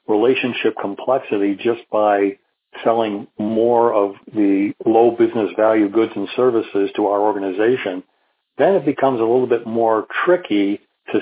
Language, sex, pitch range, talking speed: English, male, 105-120 Hz, 140 wpm